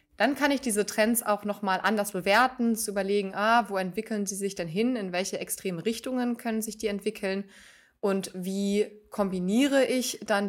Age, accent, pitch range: 20-39, German, 180-215 Hz